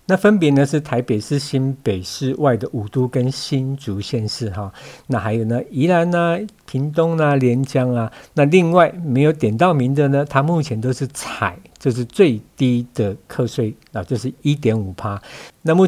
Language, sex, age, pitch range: Chinese, male, 50-69, 110-145 Hz